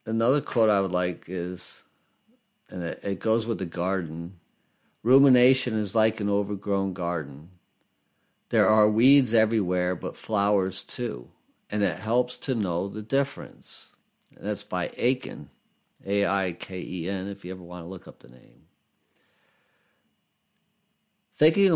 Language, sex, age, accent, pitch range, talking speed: English, male, 50-69, American, 95-130 Hz, 130 wpm